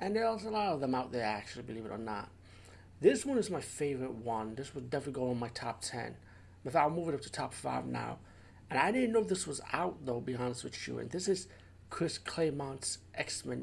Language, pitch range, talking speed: English, 100-150 Hz, 240 wpm